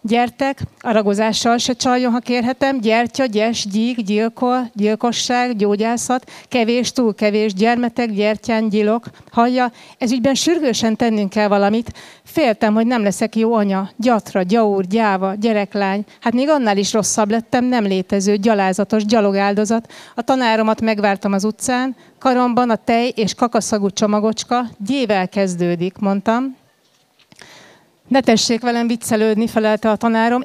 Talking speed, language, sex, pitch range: 130 wpm, Hungarian, female, 210-240 Hz